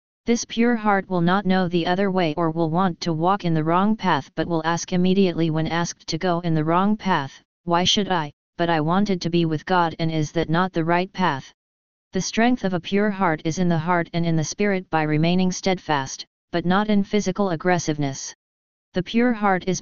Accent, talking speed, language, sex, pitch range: American, 220 wpm, English, female, 160-185 Hz